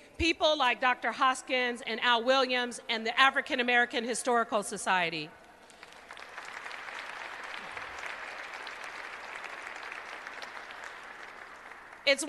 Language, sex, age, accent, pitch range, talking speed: English, female, 40-59, American, 250-300 Hz, 70 wpm